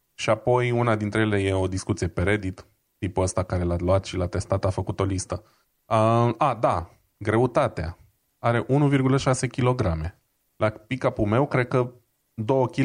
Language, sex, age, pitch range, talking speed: Romanian, male, 20-39, 95-115 Hz, 165 wpm